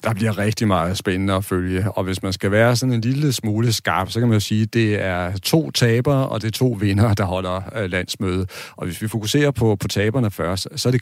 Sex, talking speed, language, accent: male, 250 wpm, Danish, native